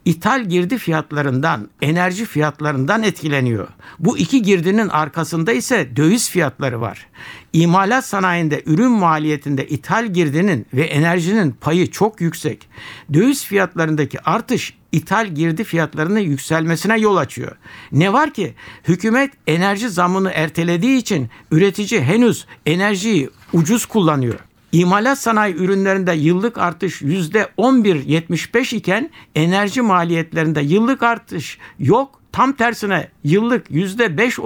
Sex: male